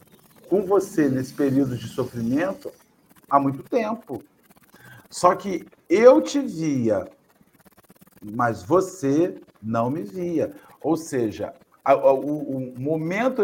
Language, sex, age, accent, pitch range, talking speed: Portuguese, male, 50-69, Brazilian, 140-190 Hz, 105 wpm